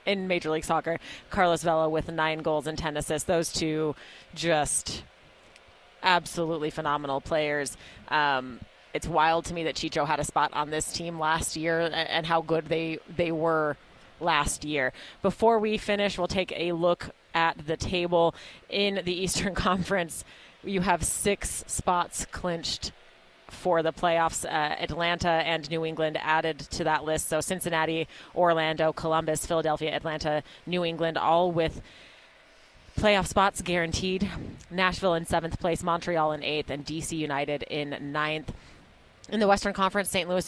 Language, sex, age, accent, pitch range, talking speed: English, female, 30-49, American, 155-175 Hz, 155 wpm